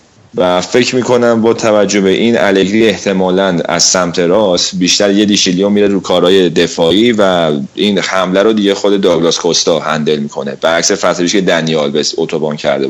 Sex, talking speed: male, 170 wpm